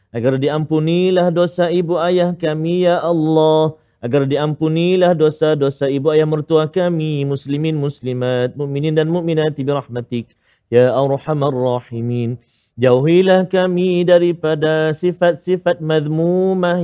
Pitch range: 130-160 Hz